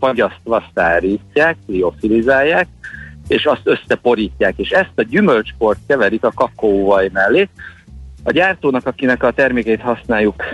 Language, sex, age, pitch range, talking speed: Hungarian, male, 50-69, 100-120 Hz, 115 wpm